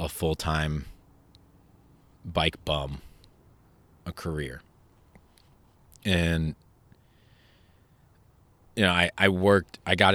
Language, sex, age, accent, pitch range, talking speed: English, male, 30-49, American, 75-95 Hz, 85 wpm